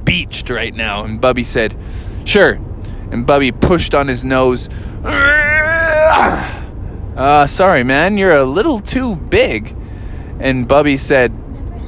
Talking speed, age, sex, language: 120 wpm, 20-39, male, English